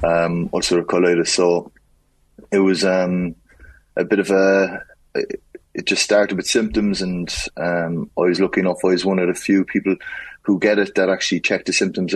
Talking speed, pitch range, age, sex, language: 180 wpm, 85-95 Hz, 20-39, male, English